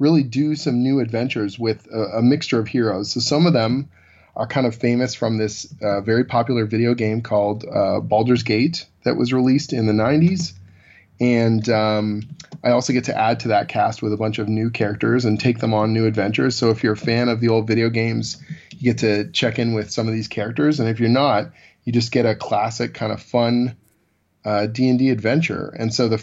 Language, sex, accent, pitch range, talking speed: English, male, American, 105-125 Hz, 220 wpm